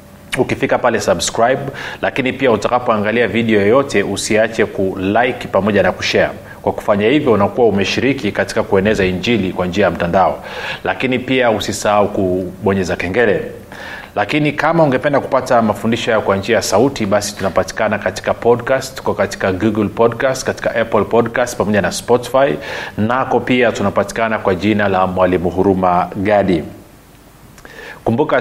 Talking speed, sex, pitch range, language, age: 135 wpm, male, 100-120 Hz, Swahili, 30-49